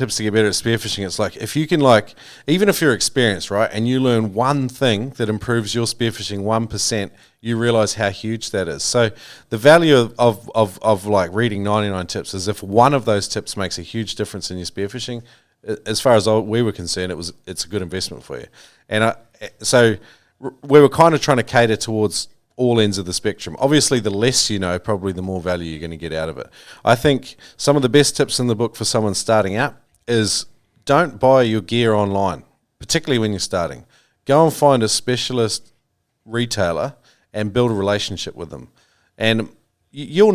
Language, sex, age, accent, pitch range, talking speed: English, male, 40-59, Australian, 100-120 Hz, 210 wpm